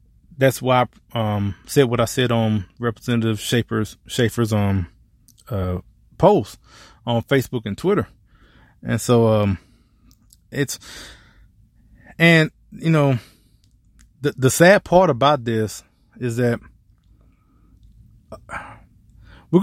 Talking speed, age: 105 wpm, 20-39